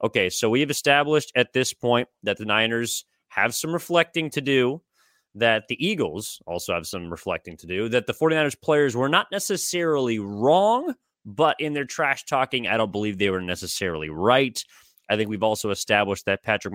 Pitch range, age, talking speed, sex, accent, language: 100-130 Hz, 30-49, 185 wpm, male, American, English